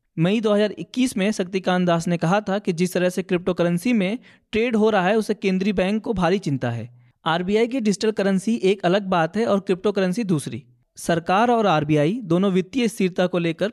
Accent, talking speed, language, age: native, 190 wpm, Hindi, 20-39